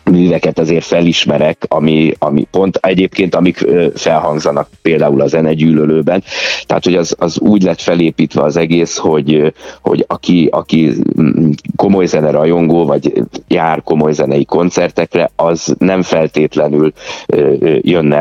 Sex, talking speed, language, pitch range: male, 125 wpm, Hungarian, 75-90 Hz